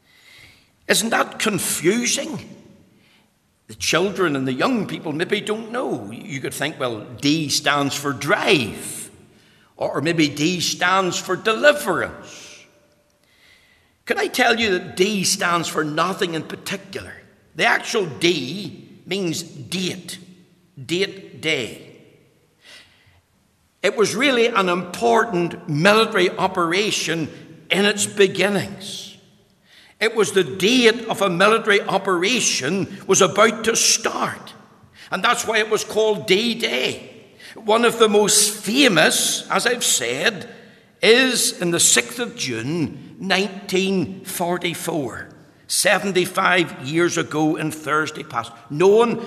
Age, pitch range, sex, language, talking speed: 60-79, 160-205 Hz, male, English, 115 wpm